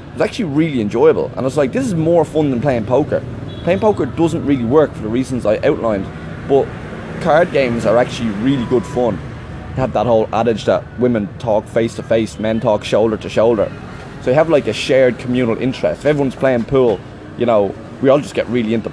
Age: 20-39